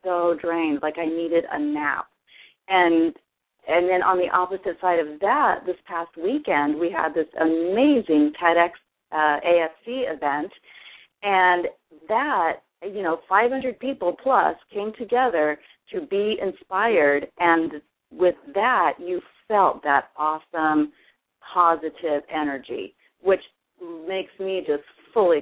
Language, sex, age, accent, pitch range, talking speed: English, female, 40-59, American, 160-205 Hz, 125 wpm